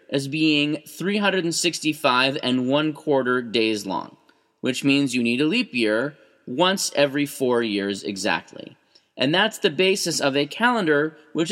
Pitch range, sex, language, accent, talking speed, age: 130-170 Hz, male, English, American, 140 wpm, 30-49